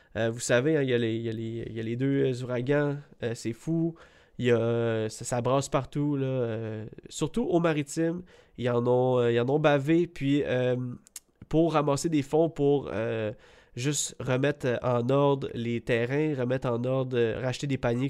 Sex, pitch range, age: male, 120-155 Hz, 20-39